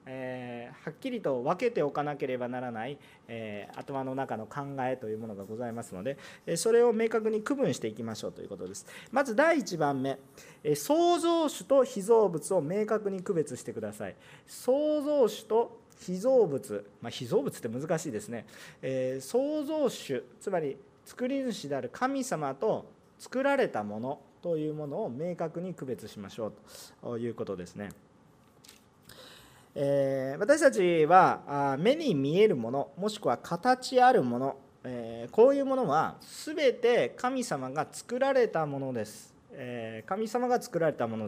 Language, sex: Japanese, male